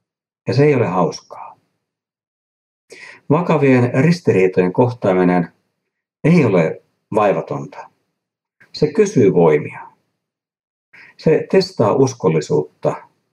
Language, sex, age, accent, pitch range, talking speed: Finnish, male, 60-79, native, 90-150 Hz, 75 wpm